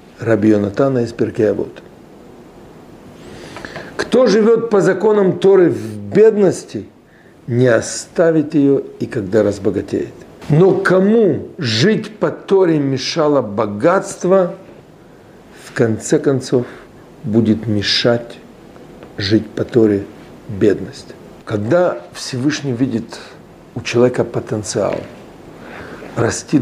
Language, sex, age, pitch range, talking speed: Russian, male, 50-69, 110-145 Hz, 90 wpm